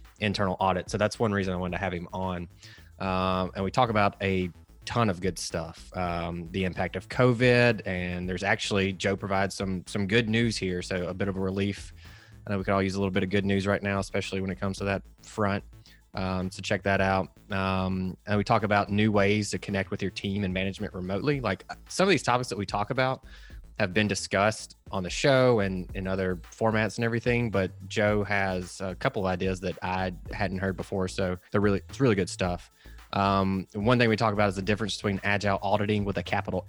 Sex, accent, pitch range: male, American, 95-105 Hz